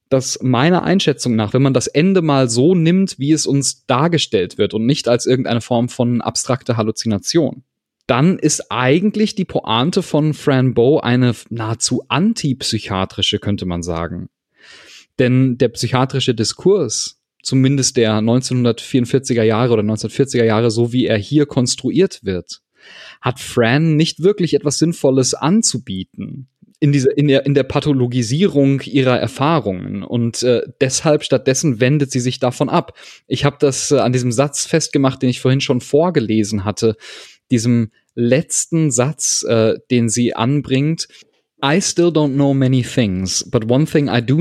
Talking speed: 150 wpm